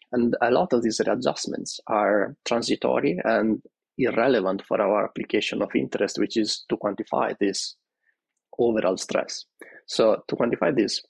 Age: 20-39